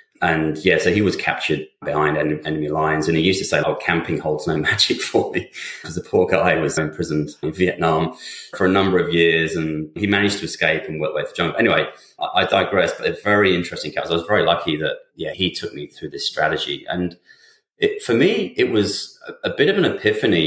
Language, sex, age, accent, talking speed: English, male, 30-49, British, 220 wpm